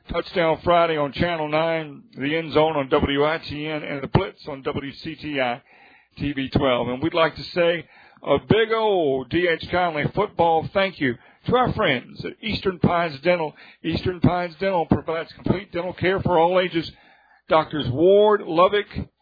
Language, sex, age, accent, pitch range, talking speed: English, male, 50-69, American, 140-175 Hz, 155 wpm